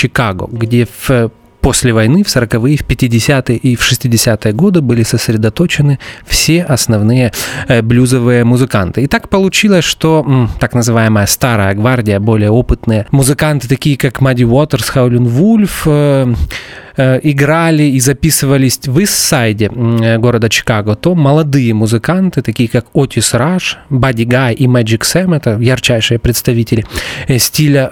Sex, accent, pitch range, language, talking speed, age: male, native, 115-150 Hz, Russian, 125 wpm, 30-49